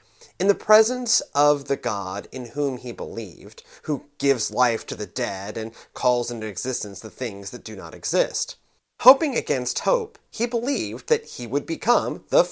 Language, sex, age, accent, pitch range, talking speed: English, male, 30-49, American, 115-175 Hz, 175 wpm